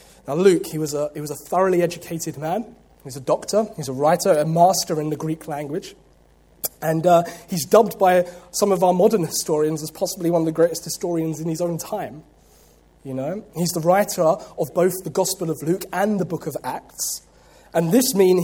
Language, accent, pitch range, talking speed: English, British, 160-220 Hz, 205 wpm